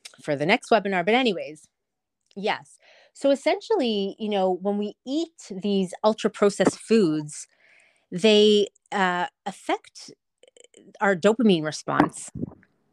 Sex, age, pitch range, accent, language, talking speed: female, 30-49, 170-210 Hz, American, English, 105 wpm